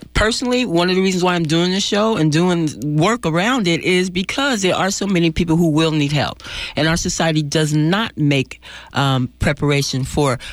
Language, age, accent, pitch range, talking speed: English, 40-59, American, 145-180 Hz, 200 wpm